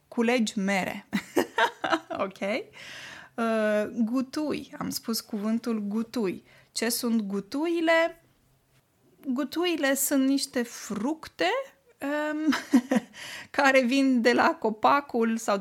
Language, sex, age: Romanian, female, 20-39